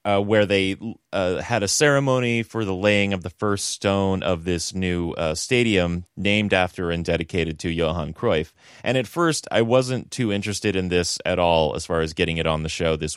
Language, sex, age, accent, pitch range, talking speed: English, male, 30-49, American, 85-115 Hz, 210 wpm